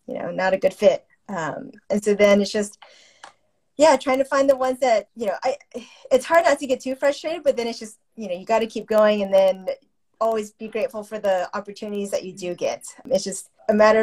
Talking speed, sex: 240 wpm, female